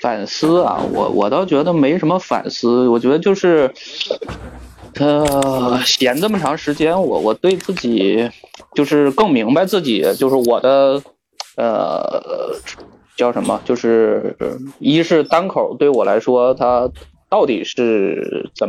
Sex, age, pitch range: male, 20-39, 110-135 Hz